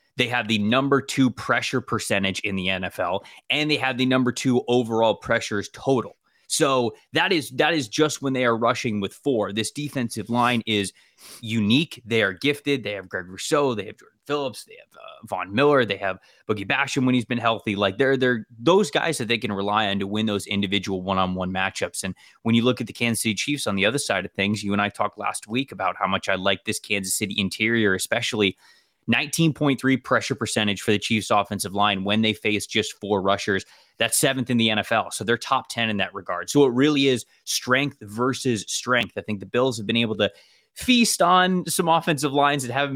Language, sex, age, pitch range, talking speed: English, male, 20-39, 100-130 Hz, 215 wpm